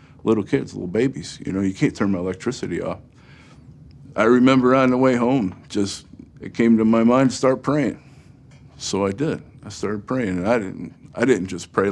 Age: 50-69